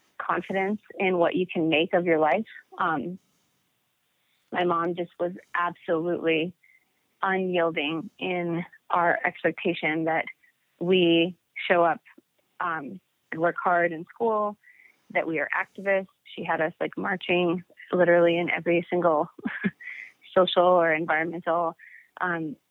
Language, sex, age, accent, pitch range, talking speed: English, female, 30-49, American, 170-185 Hz, 120 wpm